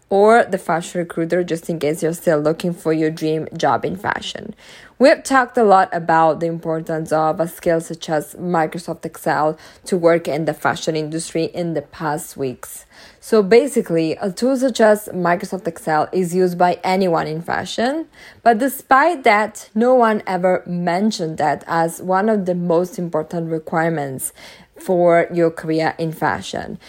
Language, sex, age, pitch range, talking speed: English, female, 20-39, 165-200 Hz, 165 wpm